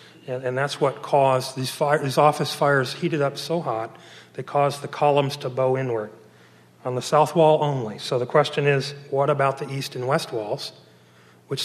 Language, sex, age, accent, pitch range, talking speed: English, male, 40-59, American, 110-155 Hz, 185 wpm